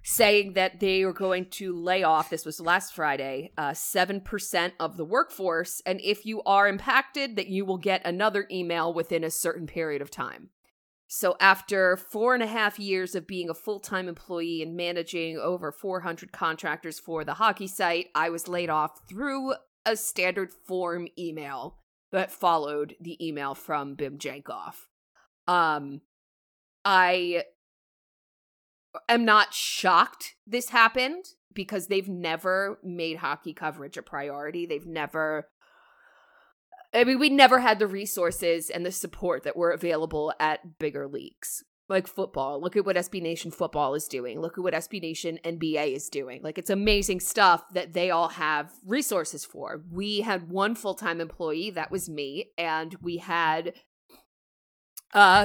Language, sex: English, female